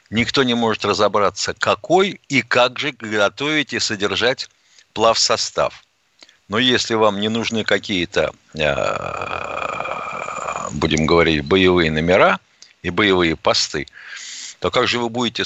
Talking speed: 115 wpm